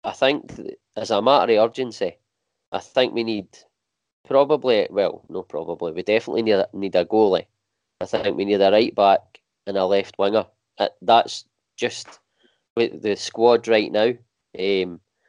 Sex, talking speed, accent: male, 160 wpm, British